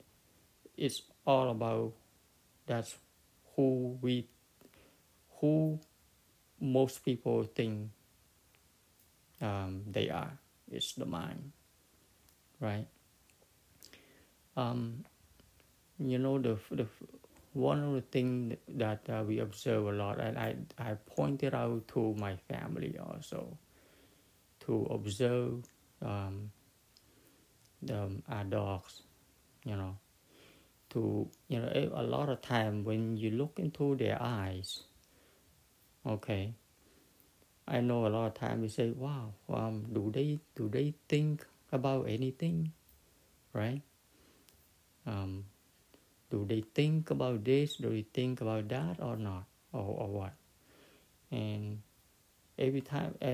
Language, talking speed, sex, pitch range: English, 110 wpm, male, 105-130 Hz